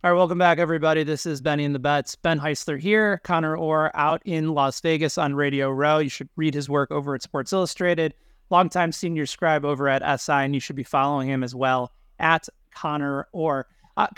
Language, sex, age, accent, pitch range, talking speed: English, male, 30-49, American, 150-185 Hz, 210 wpm